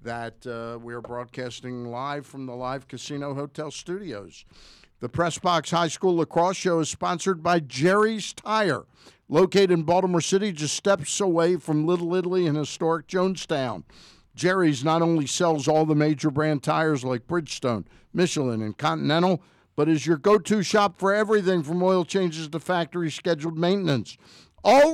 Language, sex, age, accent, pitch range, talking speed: English, male, 50-69, American, 130-180 Hz, 160 wpm